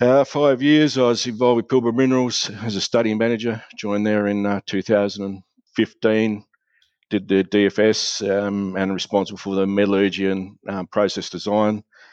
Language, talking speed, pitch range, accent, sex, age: English, 155 wpm, 95-110 Hz, Australian, male, 50-69